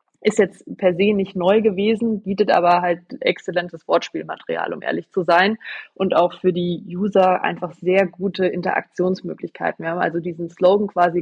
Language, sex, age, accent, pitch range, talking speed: German, female, 20-39, German, 165-185 Hz, 165 wpm